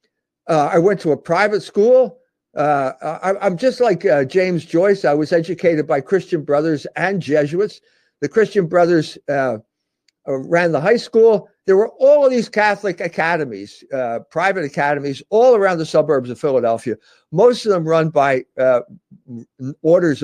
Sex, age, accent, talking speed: male, 60-79, American, 155 wpm